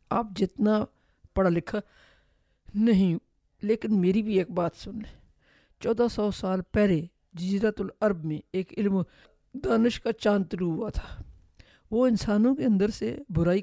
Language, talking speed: Urdu, 135 wpm